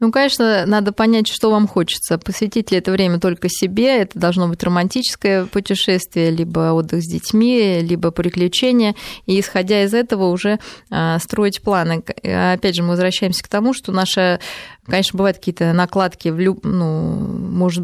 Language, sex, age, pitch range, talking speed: Russian, female, 20-39, 175-205 Hz, 160 wpm